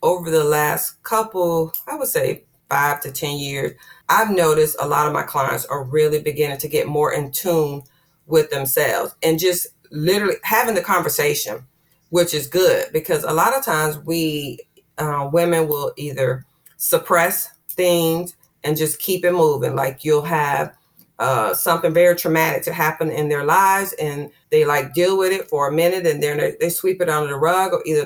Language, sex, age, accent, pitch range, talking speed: English, female, 40-59, American, 150-190 Hz, 185 wpm